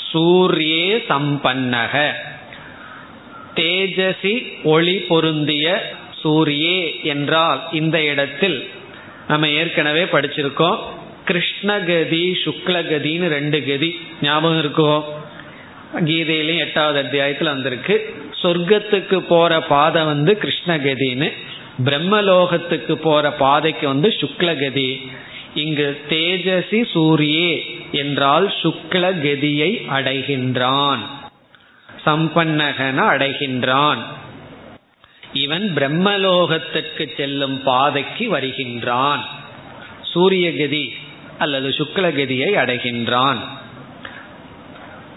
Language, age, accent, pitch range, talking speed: Tamil, 30-49, native, 140-175 Hz, 60 wpm